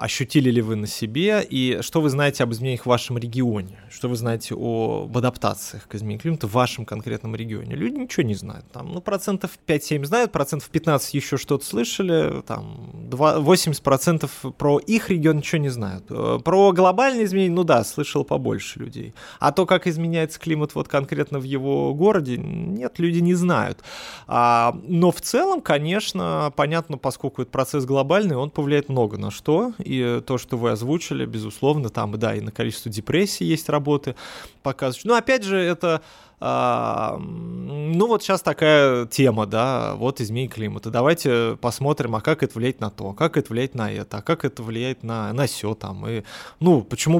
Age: 20-39